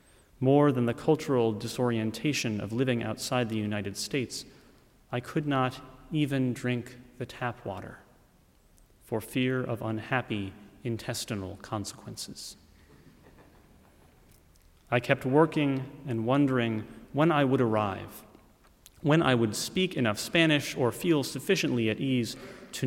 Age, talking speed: 30-49, 120 wpm